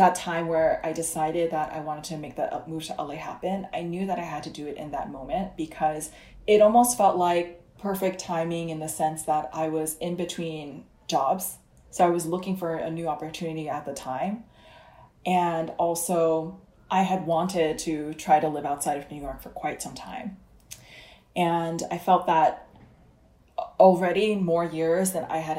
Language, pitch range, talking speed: English, 155-180 Hz, 190 wpm